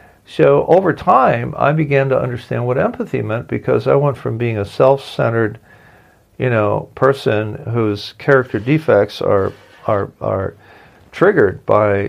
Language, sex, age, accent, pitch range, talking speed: English, male, 50-69, American, 105-150 Hz, 140 wpm